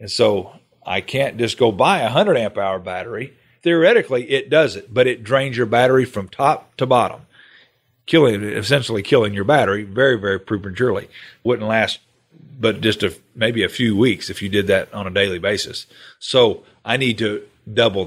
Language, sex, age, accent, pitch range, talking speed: English, male, 40-59, American, 100-120 Hz, 175 wpm